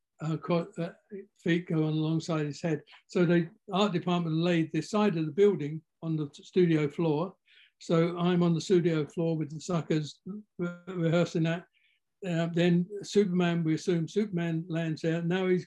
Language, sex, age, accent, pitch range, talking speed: English, male, 60-79, British, 160-180 Hz, 160 wpm